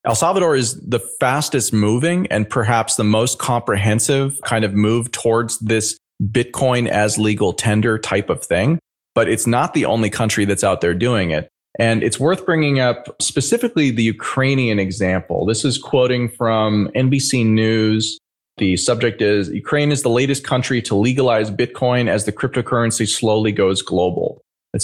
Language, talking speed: English, 160 wpm